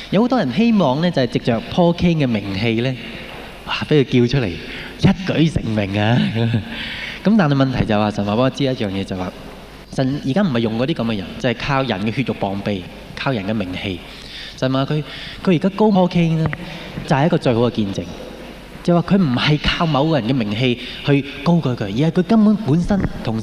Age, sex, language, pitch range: 20-39, male, Japanese, 110-150 Hz